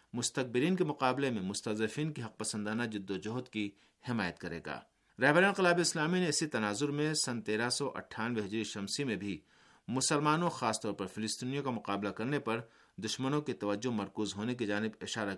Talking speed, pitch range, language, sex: 170 wpm, 110-140 Hz, Urdu, male